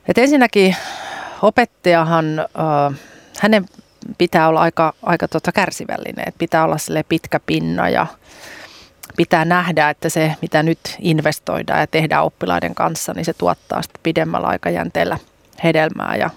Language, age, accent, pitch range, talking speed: Finnish, 30-49, native, 155-180 Hz, 135 wpm